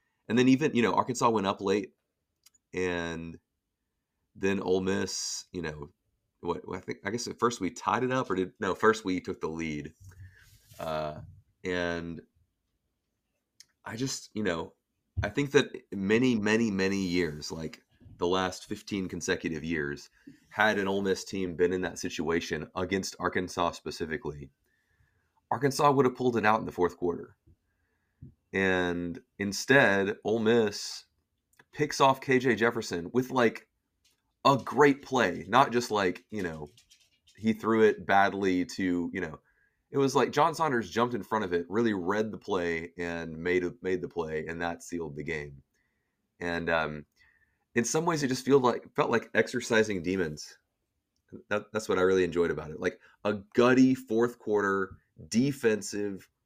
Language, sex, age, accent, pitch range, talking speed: English, male, 30-49, American, 85-115 Hz, 160 wpm